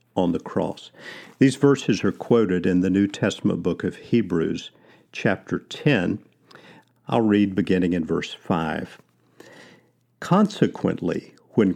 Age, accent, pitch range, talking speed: 50-69, American, 90-120 Hz, 120 wpm